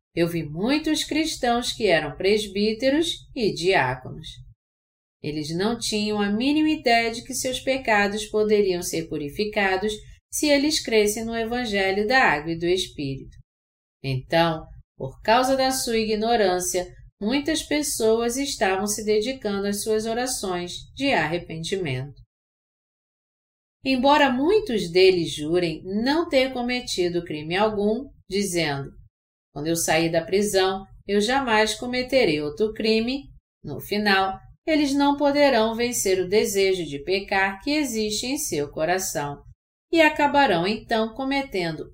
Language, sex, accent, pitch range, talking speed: Portuguese, female, Brazilian, 165-250 Hz, 125 wpm